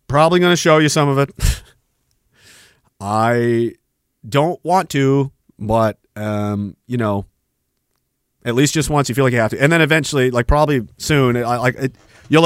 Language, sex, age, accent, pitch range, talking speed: English, male, 30-49, American, 105-140 Hz, 175 wpm